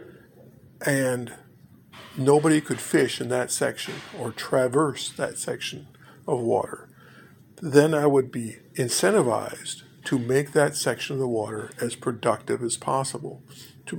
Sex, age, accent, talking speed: male, 50-69, American, 130 wpm